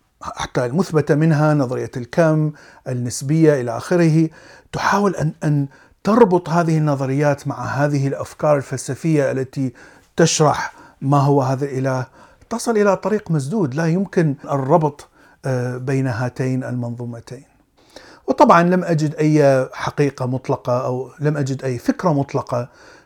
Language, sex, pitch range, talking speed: Arabic, male, 125-155 Hz, 120 wpm